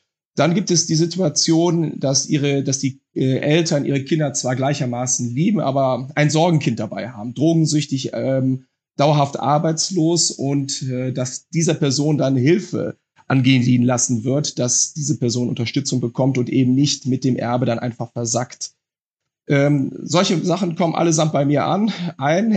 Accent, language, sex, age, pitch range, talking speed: German, German, male, 30-49, 130-160 Hz, 155 wpm